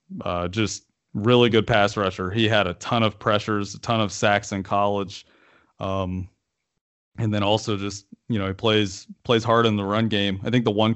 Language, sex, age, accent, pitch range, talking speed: English, male, 30-49, American, 100-120 Hz, 205 wpm